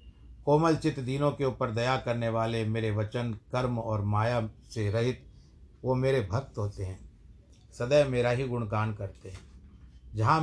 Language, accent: Hindi, native